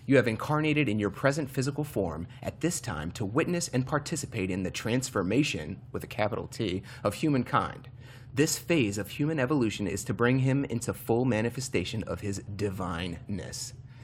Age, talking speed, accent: 30-49, 165 wpm, American